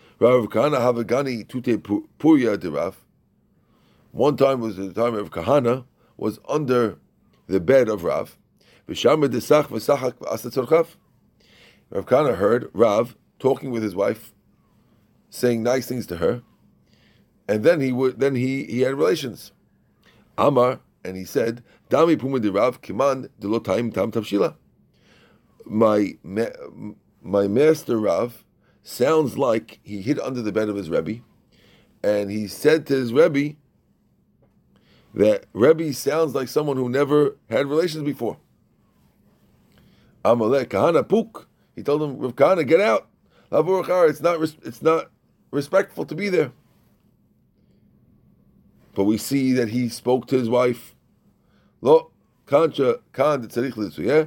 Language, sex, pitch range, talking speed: English, male, 110-150 Hz, 105 wpm